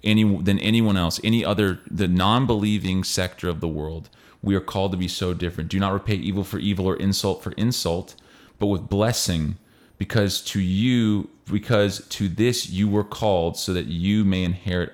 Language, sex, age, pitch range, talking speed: English, male, 30-49, 90-110 Hz, 185 wpm